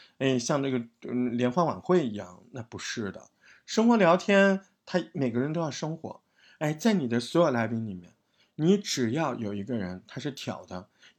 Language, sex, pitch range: Chinese, male, 115-175 Hz